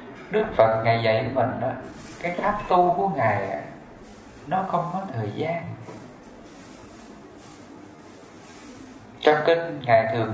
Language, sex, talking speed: English, male, 110 wpm